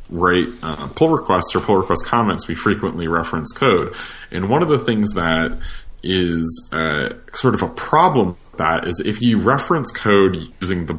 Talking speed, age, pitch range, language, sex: 175 wpm, 30-49, 85-105 Hz, English, male